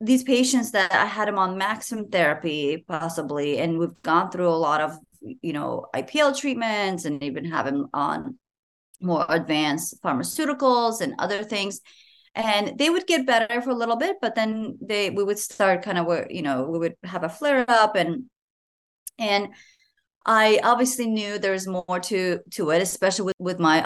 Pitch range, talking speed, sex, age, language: 170-250 Hz, 180 wpm, female, 30-49, English